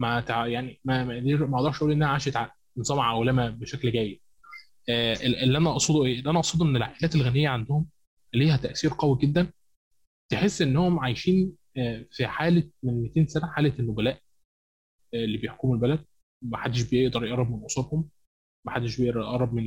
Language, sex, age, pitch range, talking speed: Arabic, male, 20-39, 120-145 Hz, 160 wpm